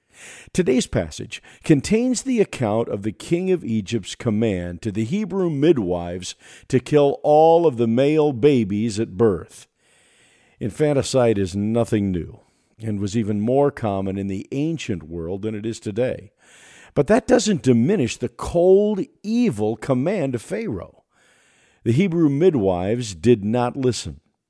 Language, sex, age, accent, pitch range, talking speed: English, male, 50-69, American, 100-145 Hz, 140 wpm